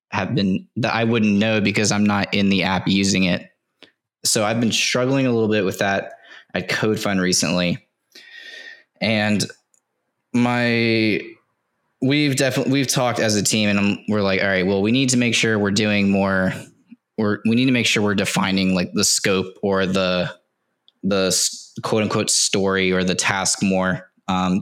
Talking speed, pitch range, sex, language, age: 175 wpm, 95-120 Hz, male, English, 20-39